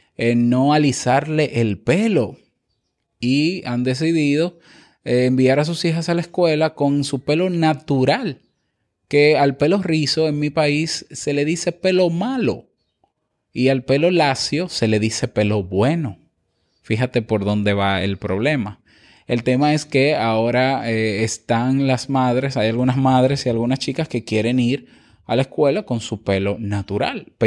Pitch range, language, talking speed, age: 115-150 Hz, Spanish, 155 wpm, 20-39